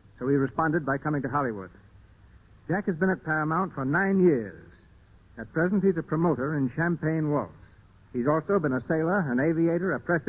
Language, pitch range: English, 110-165 Hz